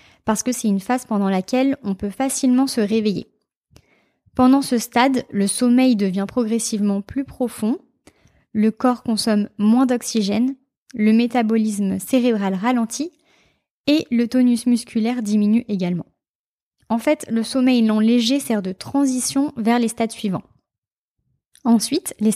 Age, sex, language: 20-39, female, French